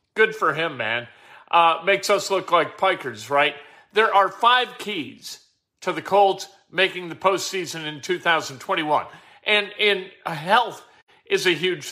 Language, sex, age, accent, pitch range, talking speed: English, male, 50-69, American, 160-200 Hz, 145 wpm